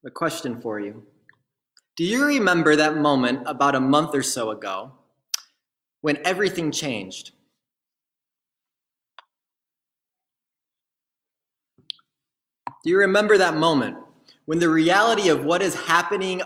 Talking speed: 110 wpm